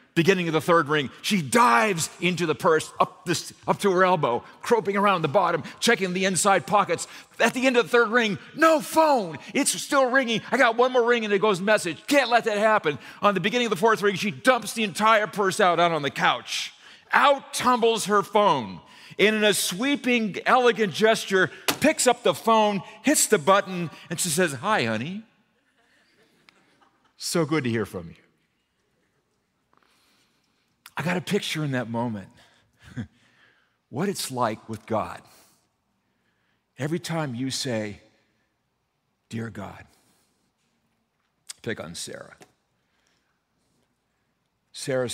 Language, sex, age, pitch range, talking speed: English, male, 40-59, 155-235 Hz, 155 wpm